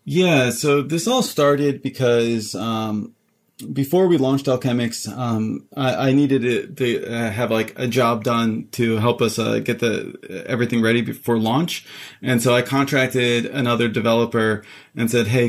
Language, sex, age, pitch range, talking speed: English, male, 30-49, 115-130 Hz, 160 wpm